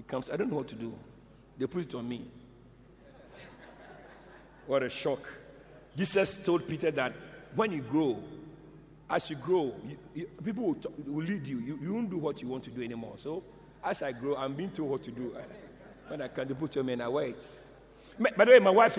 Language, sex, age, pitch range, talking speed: English, male, 60-79, 130-180 Hz, 210 wpm